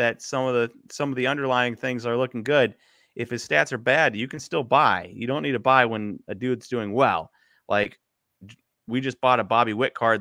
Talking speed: 230 wpm